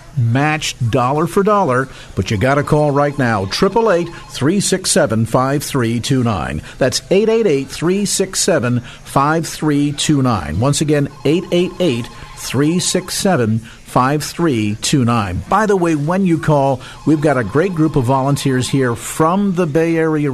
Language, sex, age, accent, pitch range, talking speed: English, male, 50-69, American, 125-170 Hz, 180 wpm